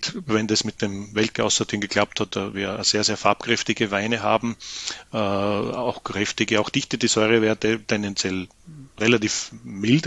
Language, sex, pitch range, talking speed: German, male, 100-115 Hz, 135 wpm